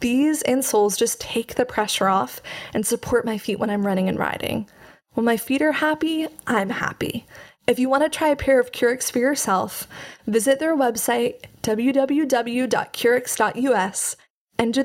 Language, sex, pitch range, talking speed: English, female, 230-285 Hz, 160 wpm